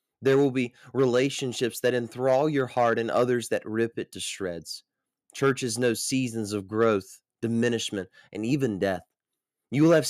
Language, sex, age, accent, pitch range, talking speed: English, male, 20-39, American, 120-150 Hz, 160 wpm